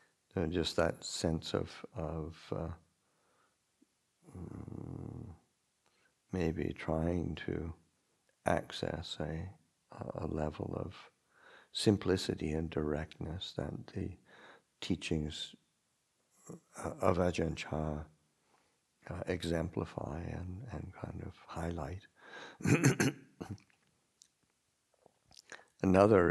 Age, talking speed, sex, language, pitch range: 60-79, 70 wpm, male, English, 80-90 Hz